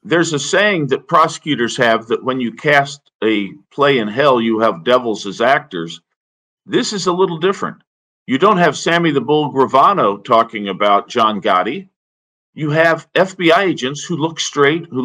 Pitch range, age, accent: 130-165 Hz, 50-69, American